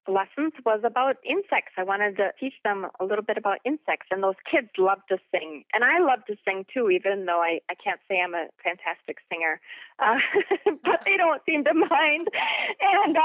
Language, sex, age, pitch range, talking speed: English, female, 30-49, 185-285 Hz, 200 wpm